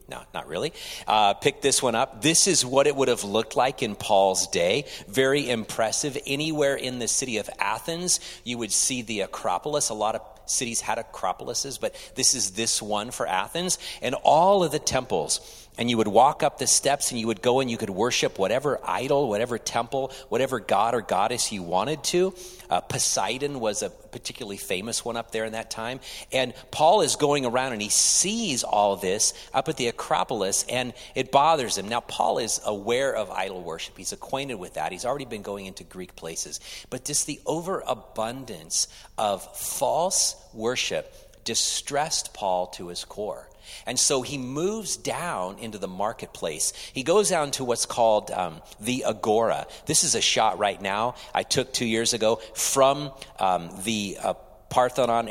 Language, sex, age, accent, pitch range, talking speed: English, male, 40-59, American, 105-140 Hz, 185 wpm